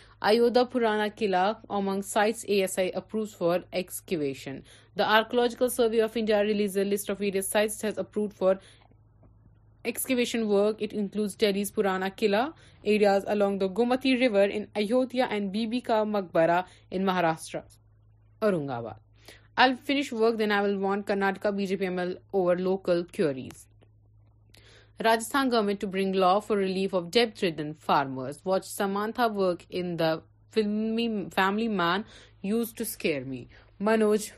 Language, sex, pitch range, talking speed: Urdu, female, 155-220 Hz, 135 wpm